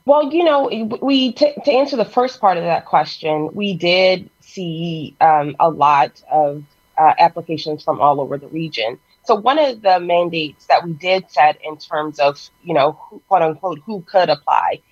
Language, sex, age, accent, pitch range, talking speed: English, female, 30-49, American, 155-235 Hz, 190 wpm